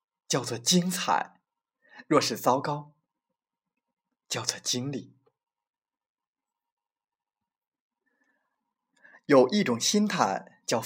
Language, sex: Chinese, male